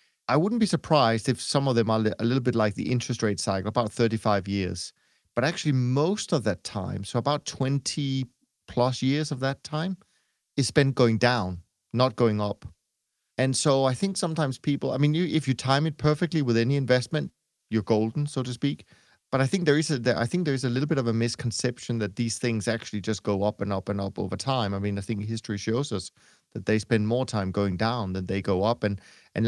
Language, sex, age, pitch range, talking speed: English, male, 30-49, 105-135 Hz, 230 wpm